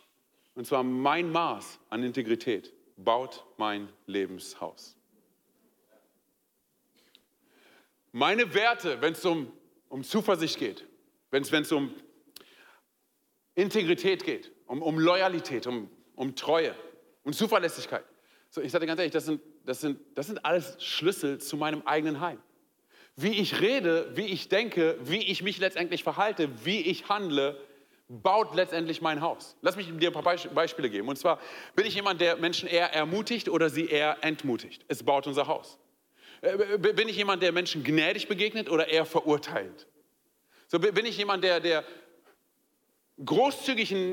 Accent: German